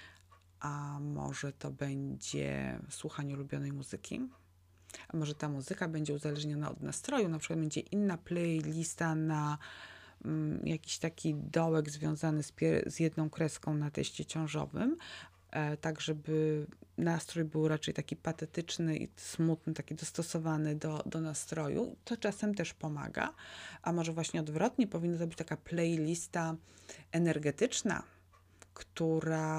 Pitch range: 150-170 Hz